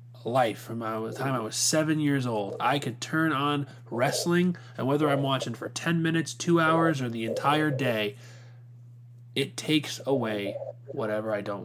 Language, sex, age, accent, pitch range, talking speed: English, male, 20-39, American, 115-135 Hz, 170 wpm